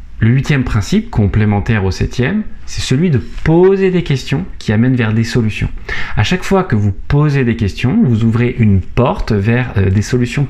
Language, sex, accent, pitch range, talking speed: French, male, French, 100-130 Hz, 185 wpm